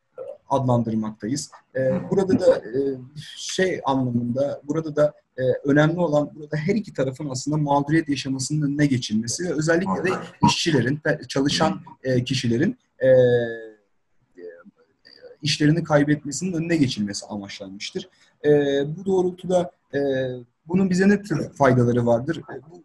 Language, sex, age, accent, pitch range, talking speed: Turkish, male, 40-59, native, 125-160 Hz, 100 wpm